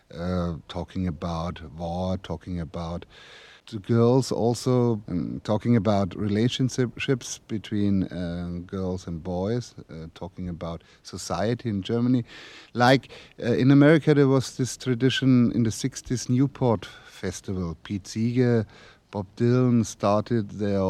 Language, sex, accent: English, male, German